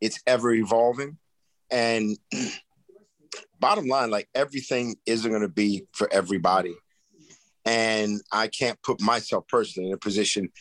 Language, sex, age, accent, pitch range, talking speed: English, male, 50-69, American, 105-150 Hz, 125 wpm